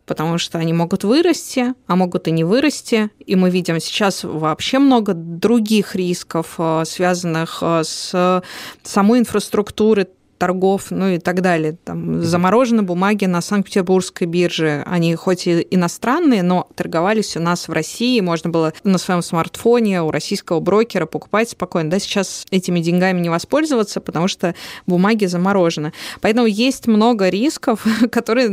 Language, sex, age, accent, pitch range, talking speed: Russian, female, 20-39, native, 175-215 Hz, 140 wpm